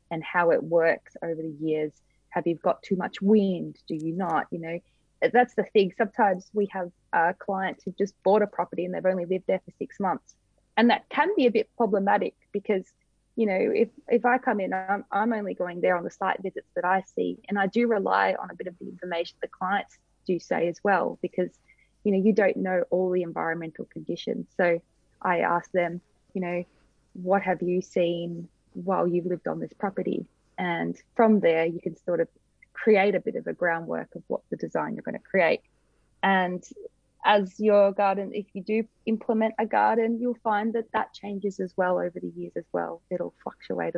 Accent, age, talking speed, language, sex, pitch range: Australian, 20-39, 205 wpm, English, female, 175-210 Hz